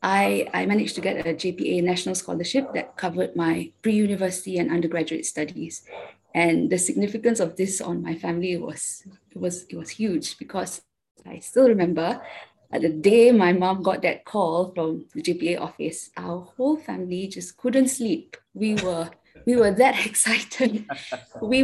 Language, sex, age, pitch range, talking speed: English, female, 20-39, 180-240 Hz, 160 wpm